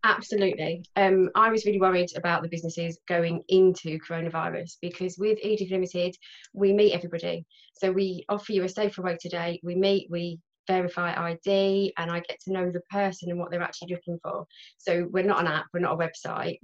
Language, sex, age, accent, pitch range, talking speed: English, female, 20-39, British, 170-195 Hz, 195 wpm